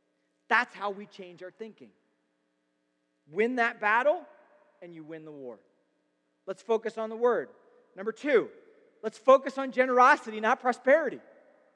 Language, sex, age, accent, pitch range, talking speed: English, male, 40-59, American, 220-275 Hz, 140 wpm